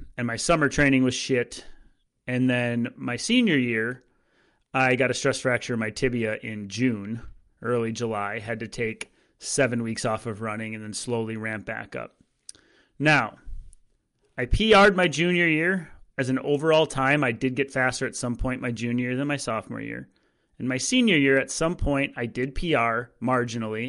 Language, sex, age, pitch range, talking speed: English, male, 30-49, 120-145 Hz, 180 wpm